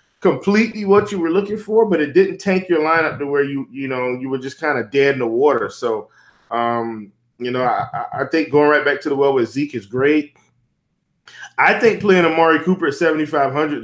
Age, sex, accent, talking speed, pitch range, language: 20-39, male, American, 215 wpm, 125-155 Hz, English